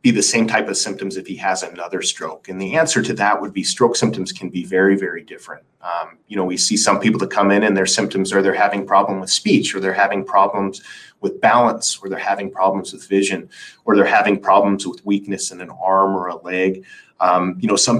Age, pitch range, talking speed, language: 30-49, 95-120 Hz, 240 wpm, English